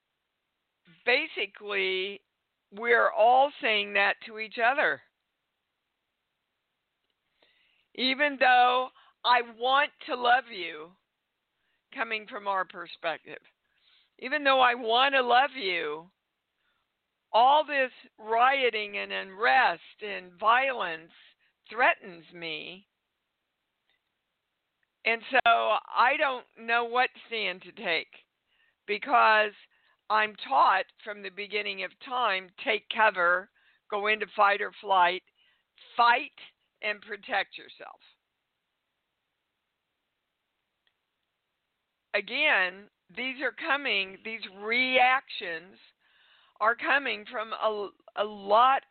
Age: 50-69